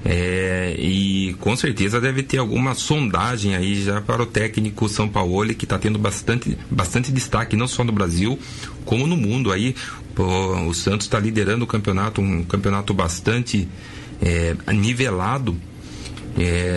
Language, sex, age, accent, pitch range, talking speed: Portuguese, male, 30-49, Brazilian, 100-125 Hz, 150 wpm